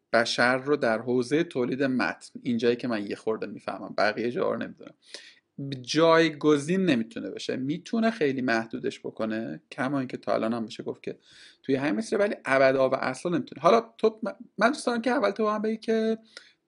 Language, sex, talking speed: Persian, male, 180 wpm